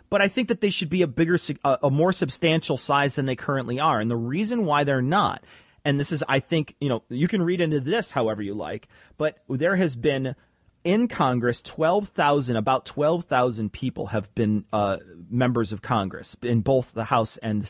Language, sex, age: English, male, 30-49